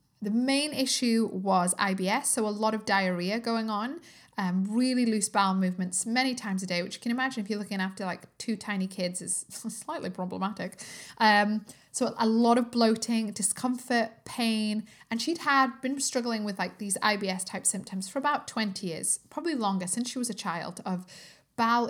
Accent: British